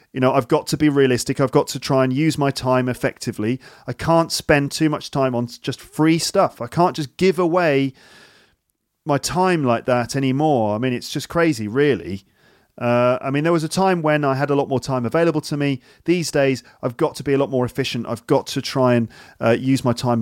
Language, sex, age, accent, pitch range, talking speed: English, male, 40-59, British, 120-150 Hz, 230 wpm